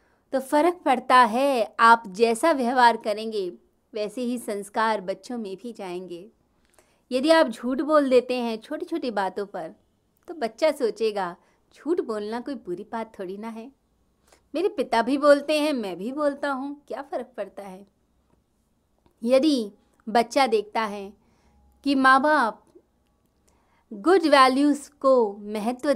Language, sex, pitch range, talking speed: Hindi, female, 210-275 Hz, 140 wpm